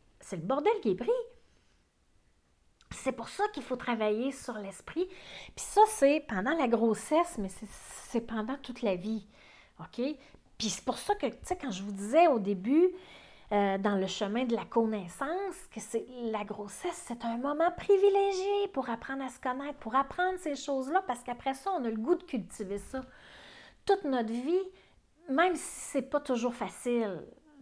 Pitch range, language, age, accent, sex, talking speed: 215-300 Hz, French, 40-59, Canadian, female, 185 wpm